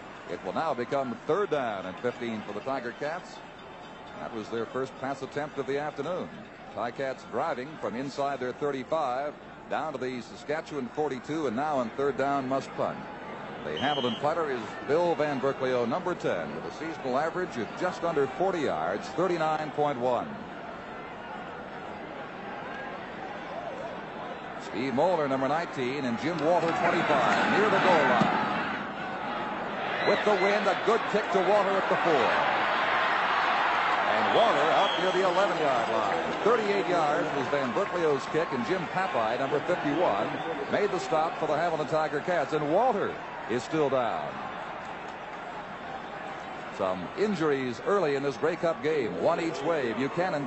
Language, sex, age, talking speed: English, male, 60-79, 145 wpm